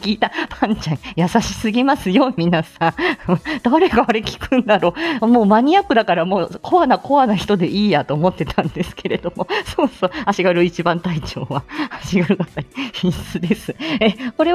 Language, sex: Japanese, female